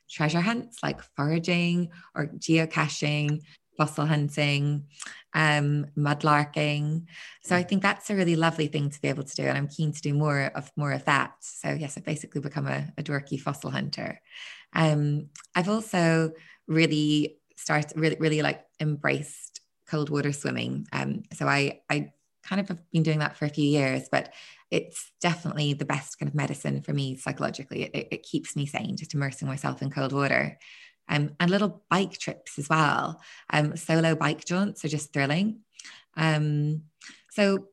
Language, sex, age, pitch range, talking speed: English, female, 20-39, 145-170 Hz, 170 wpm